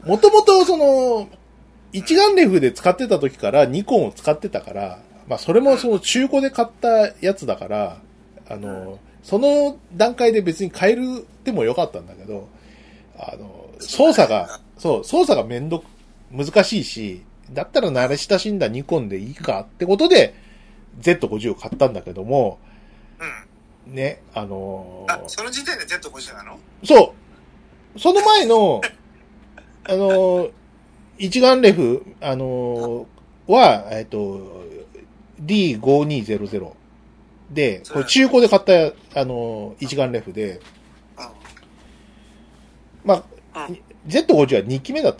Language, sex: Japanese, male